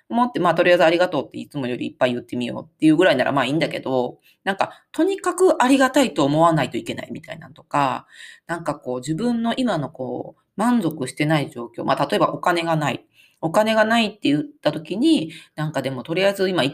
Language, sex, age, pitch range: Japanese, female, 40-59, 140-200 Hz